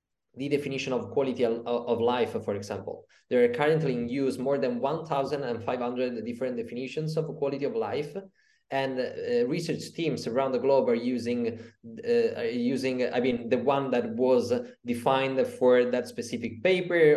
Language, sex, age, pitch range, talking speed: English, male, 20-39, 120-175 Hz, 170 wpm